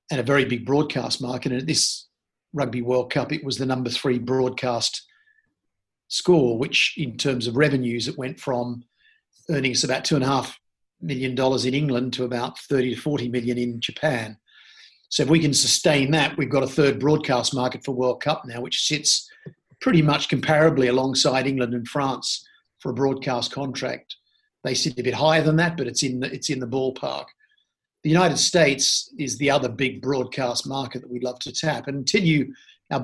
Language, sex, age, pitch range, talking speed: English, male, 50-69, 125-150 Hz, 185 wpm